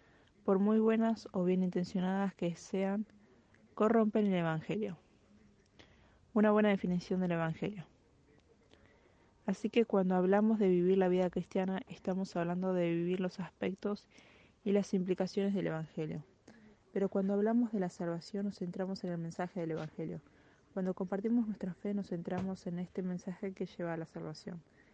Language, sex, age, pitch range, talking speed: Spanish, female, 20-39, 180-205 Hz, 150 wpm